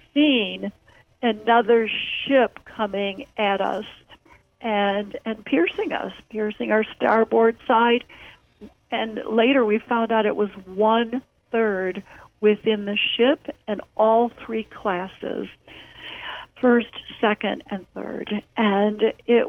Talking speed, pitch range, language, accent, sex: 110 wpm, 205-245 Hz, English, American, female